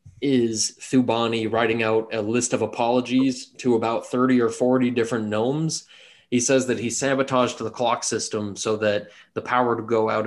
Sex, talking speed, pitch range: male, 175 wpm, 110-125 Hz